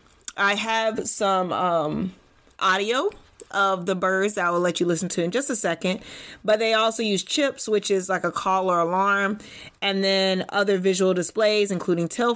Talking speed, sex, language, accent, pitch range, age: 185 wpm, female, English, American, 180-220 Hz, 30-49